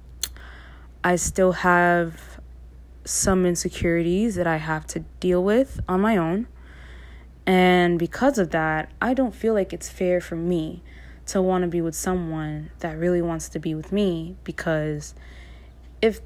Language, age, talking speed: English, 20-39, 150 wpm